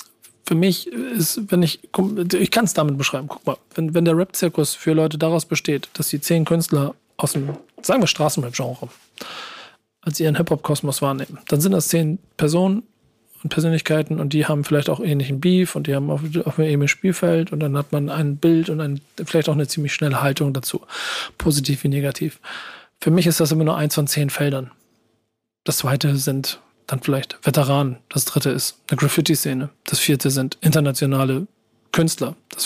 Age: 40-59